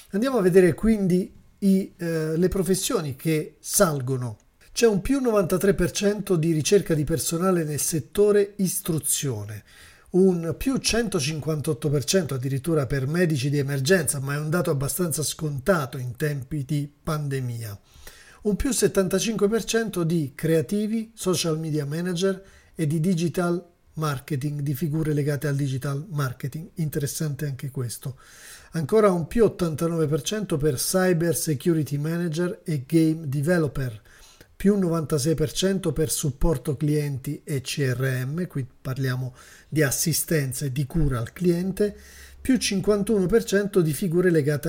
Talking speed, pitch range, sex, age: 125 wpm, 145-185 Hz, male, 40-59